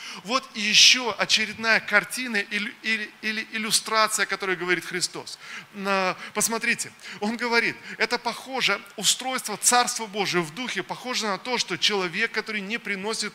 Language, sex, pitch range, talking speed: Russian, male, 195-225 Hz, 120 wpm